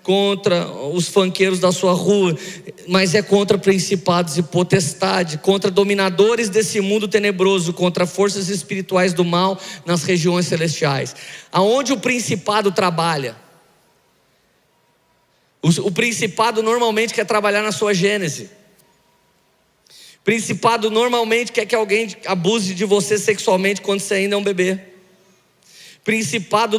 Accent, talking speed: Brazilian, 120 wpm